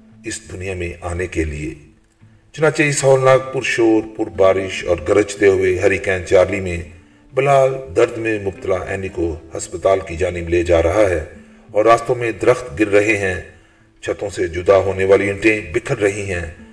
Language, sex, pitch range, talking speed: Urdu, male, 95-130 Hz, 110 wpm